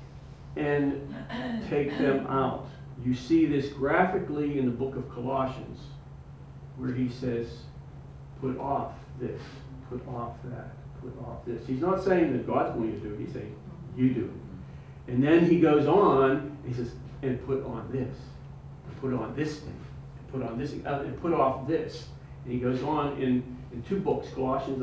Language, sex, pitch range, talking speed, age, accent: English, male, 125-145 Hz, 180 wpm, 40-59, American